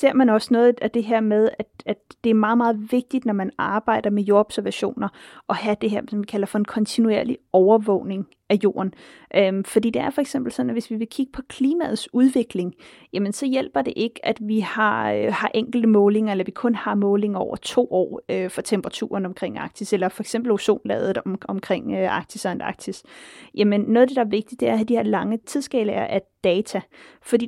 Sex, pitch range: female, 200-240 Hz